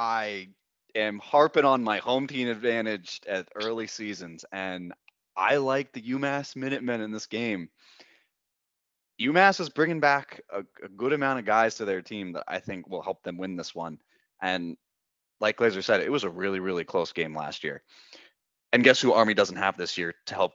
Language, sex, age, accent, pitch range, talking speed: English, male, 20-39, American, 95-130 Hz, 190 wpm